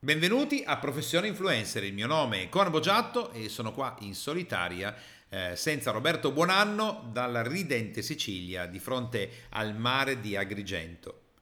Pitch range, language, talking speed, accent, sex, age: 105-155 Hz, Italian, 145 wpm, native, male, 50-69